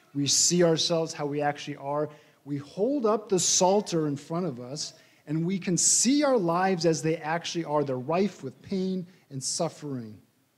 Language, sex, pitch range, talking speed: English, male, 140-195 Hz, 180 wpm